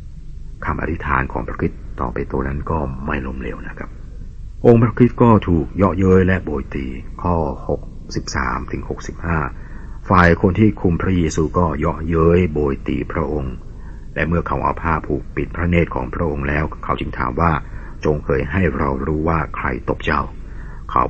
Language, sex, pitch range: Thai, male, 70-85 Hz